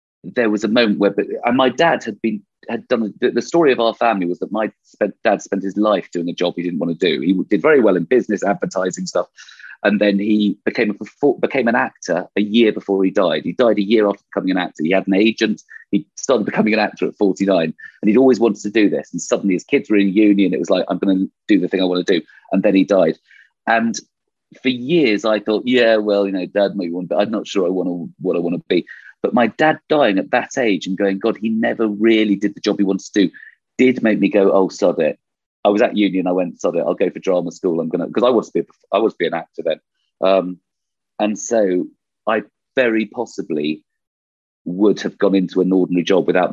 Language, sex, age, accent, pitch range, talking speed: English, male, 30-49, British, 95-115 Hz, 245 wpm